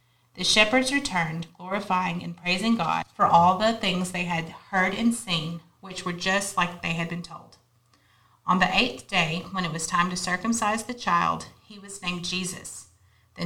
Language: English